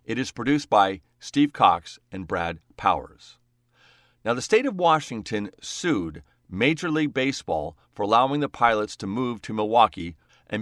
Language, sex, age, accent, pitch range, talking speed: English, male, 40-59, American, 100-140 Hz, 155 wpm